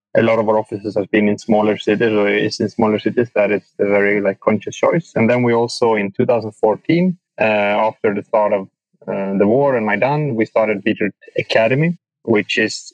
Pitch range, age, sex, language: 105-130 Hz, 20-39, male, English